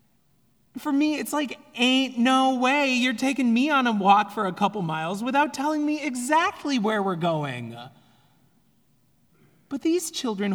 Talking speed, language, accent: 155 wpm, English, American